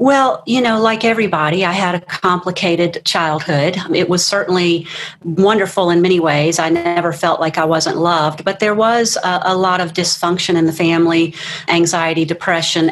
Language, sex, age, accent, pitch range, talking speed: English, female, 40-59, American, 170-210 Hz, 170 wpm